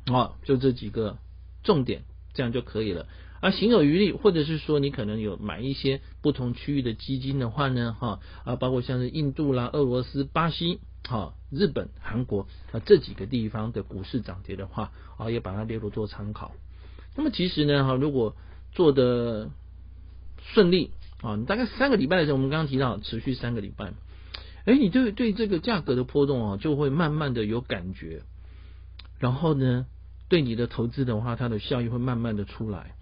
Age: 50-69